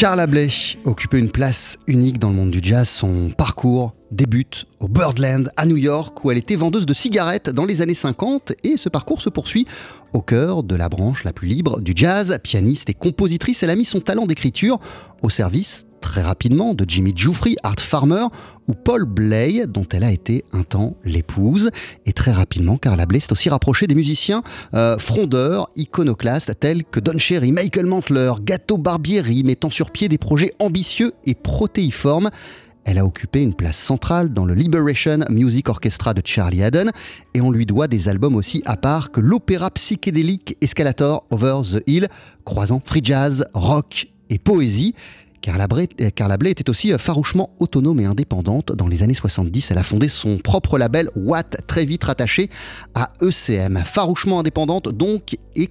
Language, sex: French, male